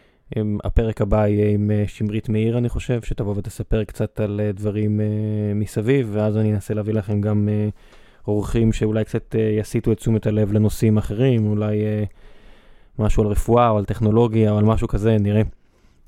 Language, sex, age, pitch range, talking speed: Hebrew, male, 20-39, 105-120 Hz, 155 wpm